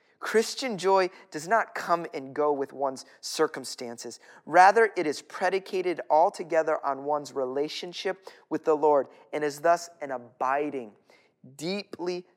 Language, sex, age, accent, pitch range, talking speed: English, male, 30-49, American, 155-195 Hz, 130 wpm